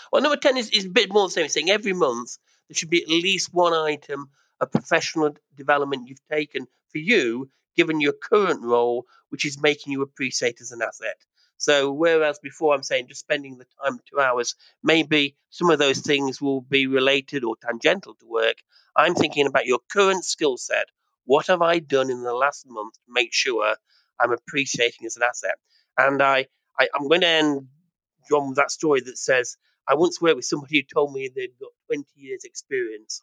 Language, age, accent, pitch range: English, 40-59, British, 135-195 Hz